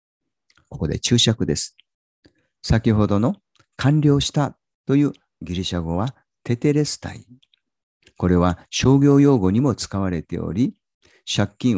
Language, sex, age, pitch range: Japanese, male, 50-69, 90-135 Hz